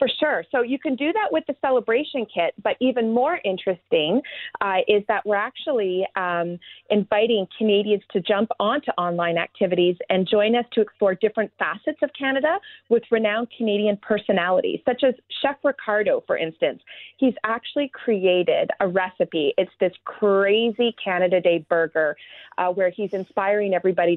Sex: female